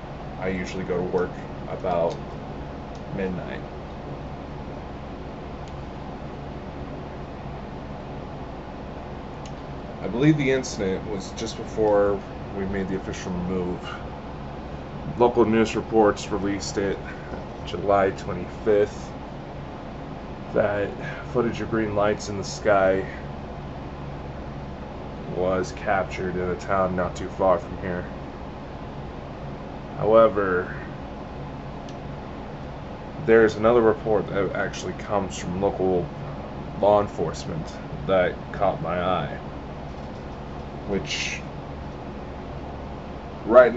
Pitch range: 70-100 Hz